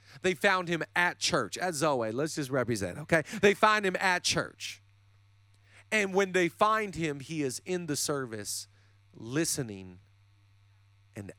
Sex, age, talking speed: male, 40-59, 150 wpm